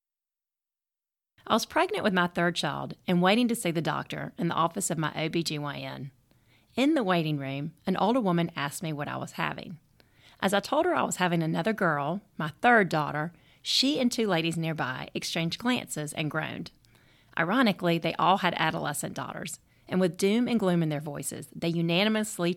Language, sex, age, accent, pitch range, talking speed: English, female, 40-59, American, 155-200 Hz, 185 wpm